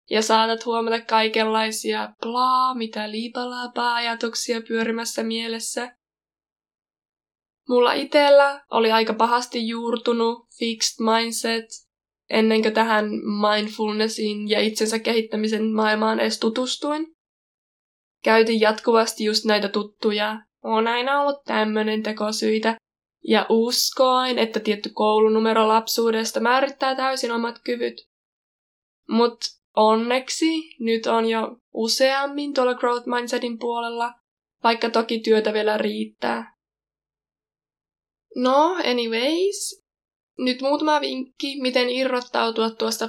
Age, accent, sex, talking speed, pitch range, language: 20-39, native, female, 95 wpm, 220-255 Hz, Finnish